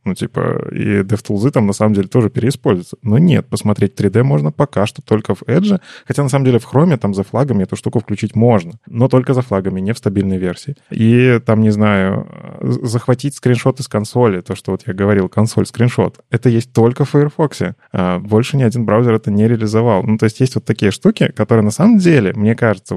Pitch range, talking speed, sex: 105-130 Hz, 210 wpm, male